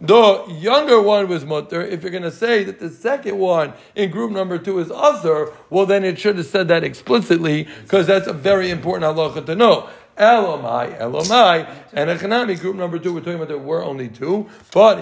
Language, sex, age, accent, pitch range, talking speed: English, male, 60-79, American, 150-195 Hz, 205 wpm